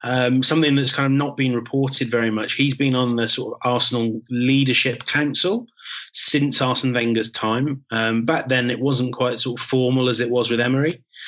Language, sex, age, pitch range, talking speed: Persian, male, 30-49, 115-135 Hz, 195 wpm